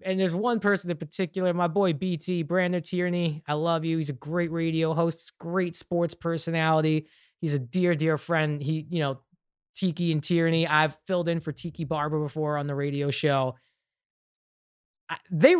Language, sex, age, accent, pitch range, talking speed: English, male, 20-39, American, 160-225 Hz, 175 wpm